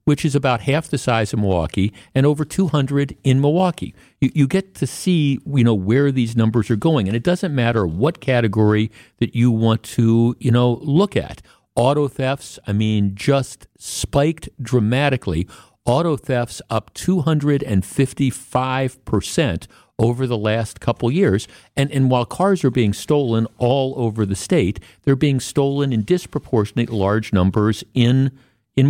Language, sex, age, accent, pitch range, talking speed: English, male, 50-69, American, 110-140 Hz, 165 wpm